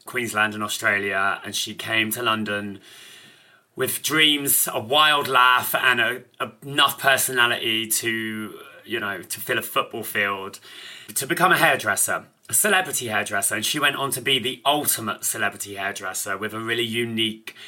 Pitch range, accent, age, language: 110-135 Hz, British, 30-49, English